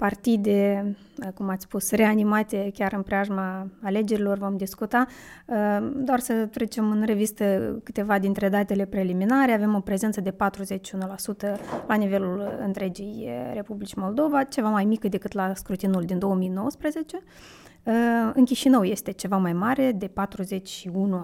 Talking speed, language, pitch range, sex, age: 130 wpm, Romanian, 195-235 Hz, female, 20-39